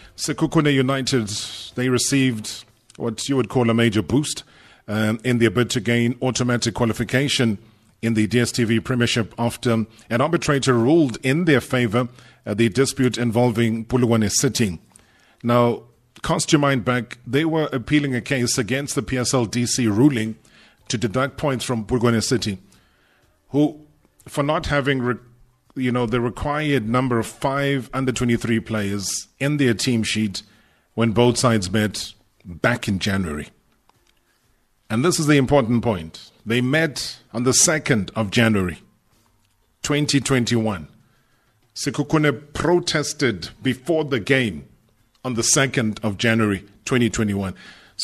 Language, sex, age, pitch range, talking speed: English, male, 30-49, 110-135 Hz, 135 wpm